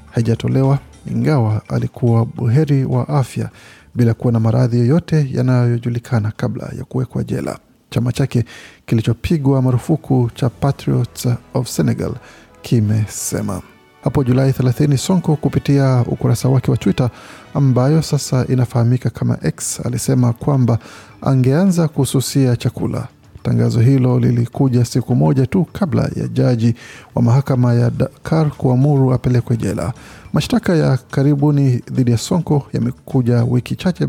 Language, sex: Swahili, male